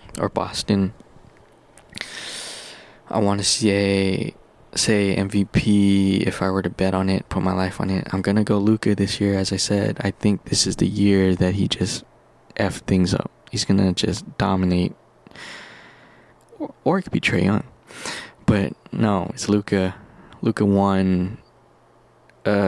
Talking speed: 155 wpm